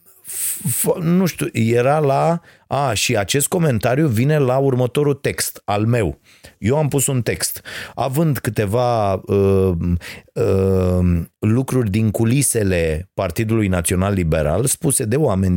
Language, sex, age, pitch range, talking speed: Romanian, male, 30-49, 95-130 Hz, 125 wpm